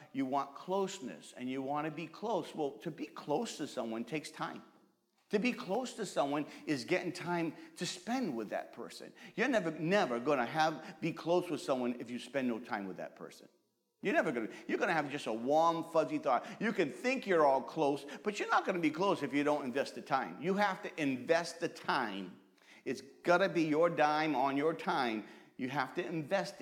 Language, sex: English, male